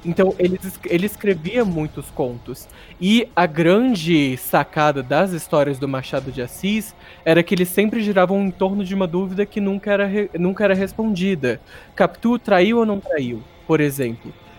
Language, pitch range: Portuguese, 155-200 Hz